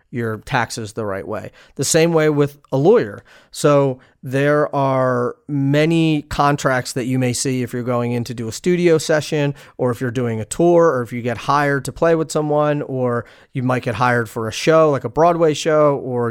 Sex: male